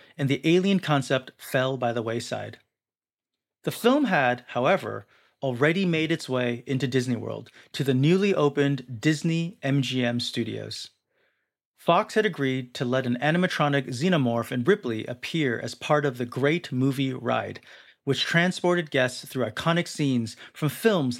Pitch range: 125-160 Hz